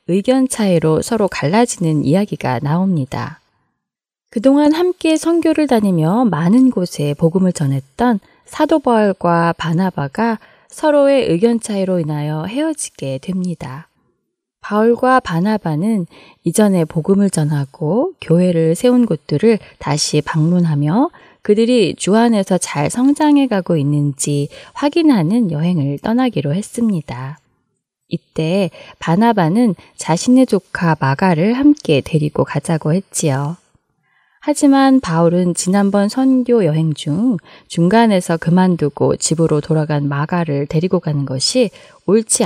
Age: 20-39